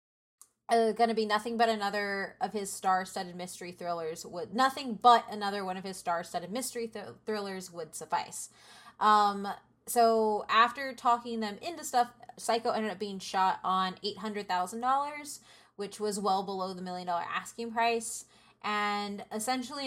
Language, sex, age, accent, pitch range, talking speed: English, female, 20-39, American, 195-235 Hz, 155 wpm